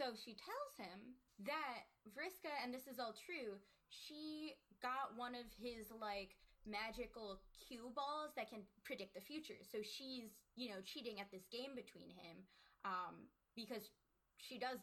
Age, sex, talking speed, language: 10-29, female, 160 wpm, English